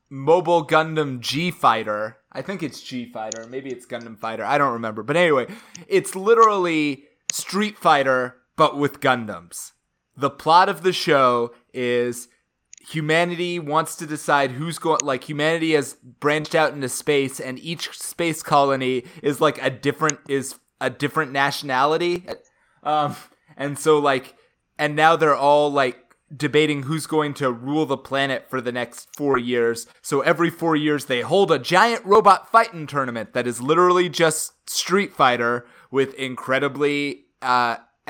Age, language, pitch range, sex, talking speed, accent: 20-39, English, 130-165 Hz, male, 155 wpm, American